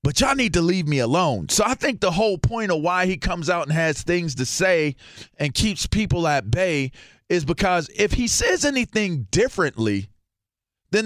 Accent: American